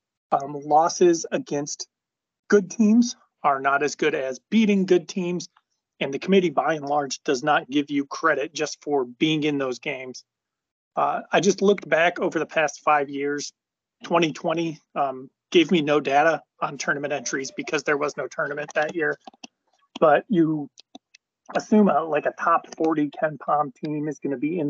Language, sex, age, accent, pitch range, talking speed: English, male, 30-49, American, 145-175 Hz, 170 wpm